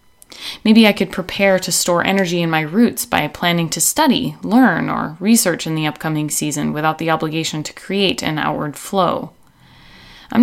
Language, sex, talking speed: English, female, 175 wpm